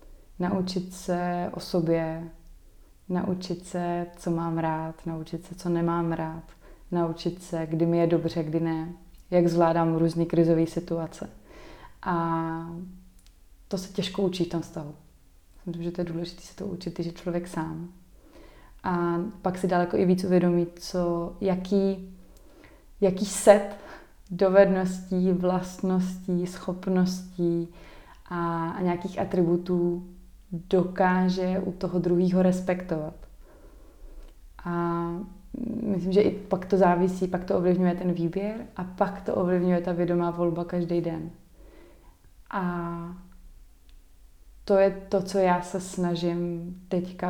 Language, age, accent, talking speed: Czech, 20-39, native, 125 wpm